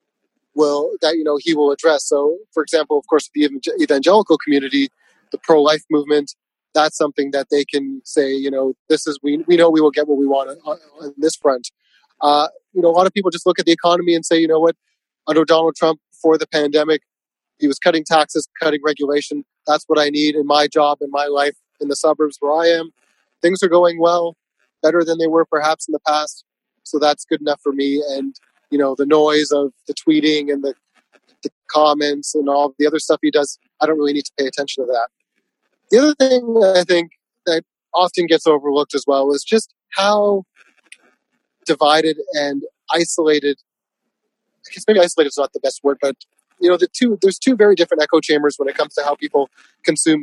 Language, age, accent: English, 30-49, American